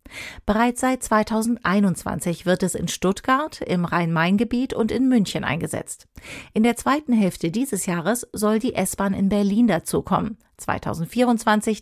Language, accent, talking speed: German, German, 135 wpm